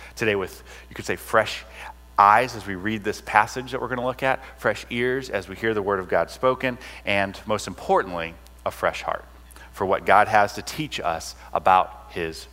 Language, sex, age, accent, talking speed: English, male, 30-49, American, 205 wpm